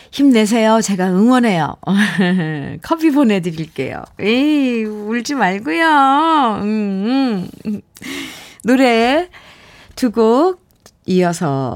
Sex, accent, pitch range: female, native, 175-245 Hz